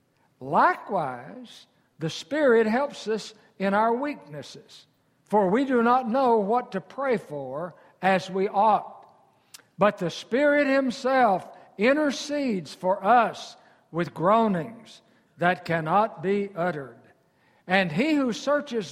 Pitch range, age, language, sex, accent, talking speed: 150-225 Hz, 60-79, English, male, American, 115 wpm